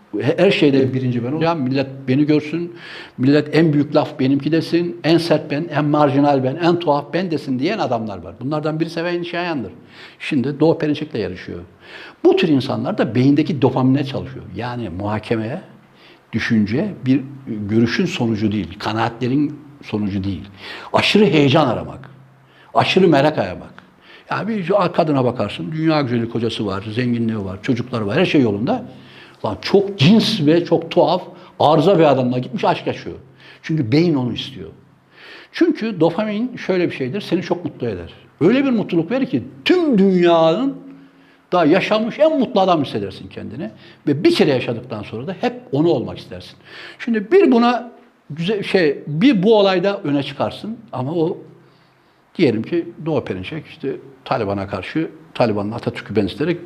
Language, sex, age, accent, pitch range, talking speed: Turkish, male, 60-79, native, 125-175 Hz, 150 wpm